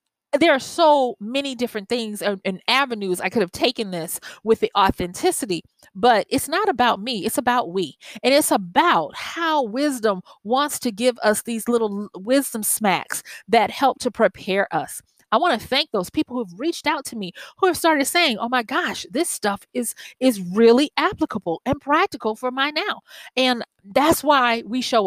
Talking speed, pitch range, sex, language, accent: 185 wpm, 195-275 Hz, female, English, American